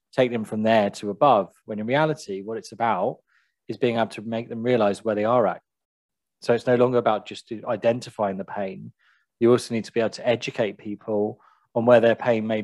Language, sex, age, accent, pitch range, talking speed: English, male, 30-49, British, 105-125 Hz, 220 wpm